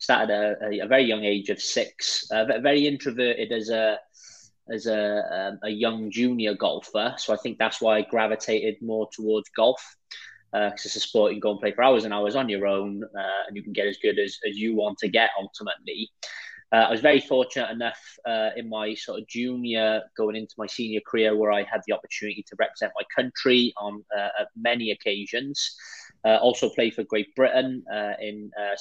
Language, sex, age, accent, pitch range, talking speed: English, male, 20-39, British, 105-120 Hz, 210 wpm